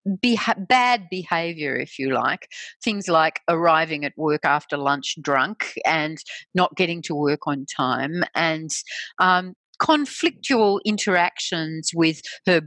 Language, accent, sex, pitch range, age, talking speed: English, Australian, female, 145-185 Hz, 50-69, 125 wpm